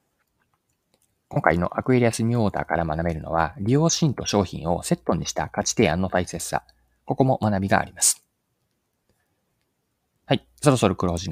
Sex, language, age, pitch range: male, Japanese, 20-39, 85-120 Hz